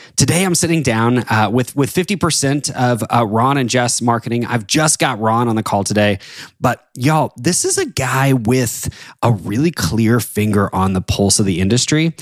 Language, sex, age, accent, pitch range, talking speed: English, male, 20-39, American, 105-140 Hz, 190 wpm